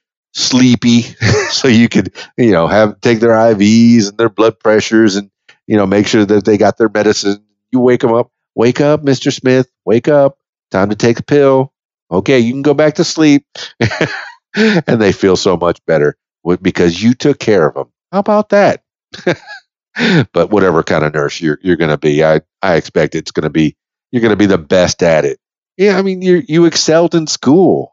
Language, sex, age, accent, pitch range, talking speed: English, male, 50-69, American, 95-135 Hz, 195 wpm